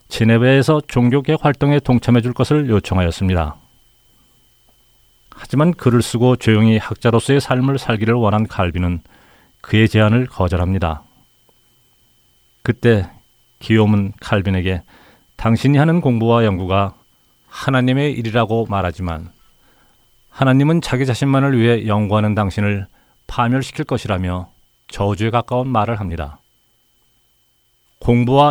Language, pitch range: Korean, 95-125 Hz